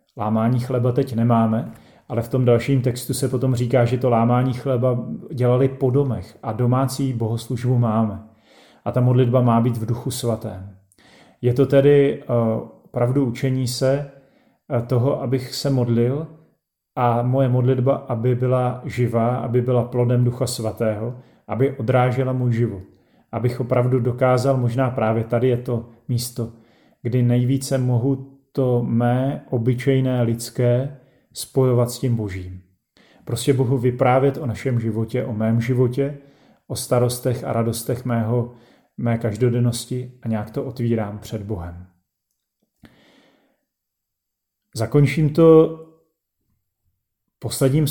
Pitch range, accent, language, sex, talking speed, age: 115-130 Hz, native, Czech, male, 125 wpm, 40-59